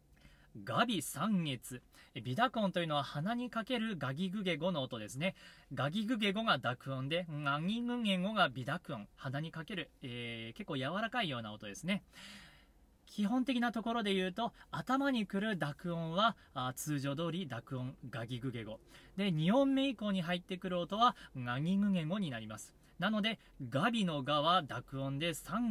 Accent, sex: native, male